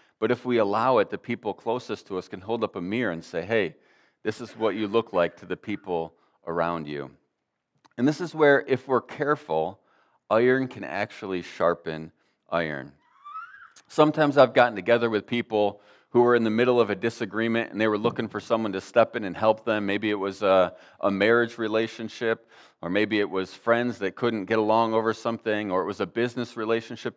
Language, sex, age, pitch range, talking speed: English, male, 40-59, 95-120 Hz, 200 wpm